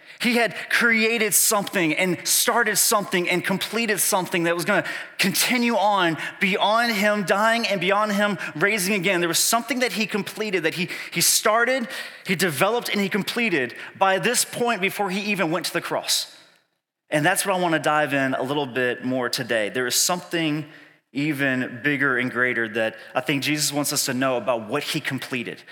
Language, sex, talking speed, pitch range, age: English, male, 185 wpm, 150-205 Hz, 30-49